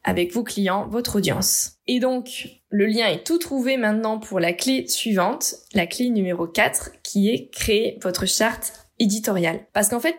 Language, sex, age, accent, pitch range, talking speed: French, female, 20-39, French, 205-270 Hz, 175 wpm